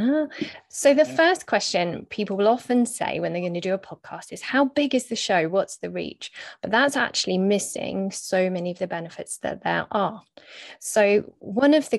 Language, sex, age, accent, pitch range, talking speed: English, female, 20-39, British, 185-225 Hz, 205 wpm